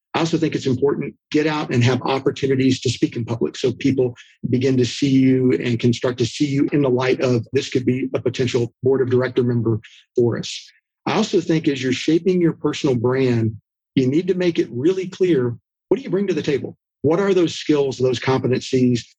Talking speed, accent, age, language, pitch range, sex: 220 wpm, American, 50-69, English, 125-145 Hz, male